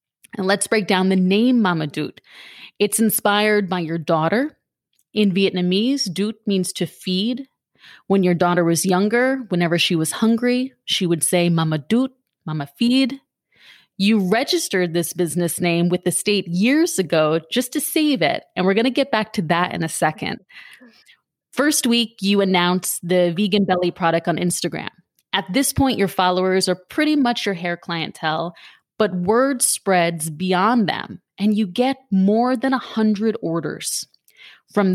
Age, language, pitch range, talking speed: 30-49, English, 175-225 Hz, 160 wpm